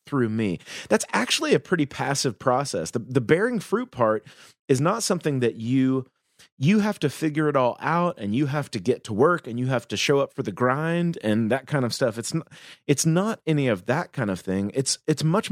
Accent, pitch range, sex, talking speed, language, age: American, 115-155 Hz, male, 230 wpm, English, 30-49